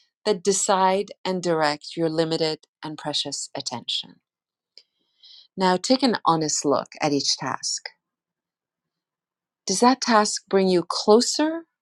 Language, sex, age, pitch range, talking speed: English, female, 40-59, 155-205 Hz, 115 wpm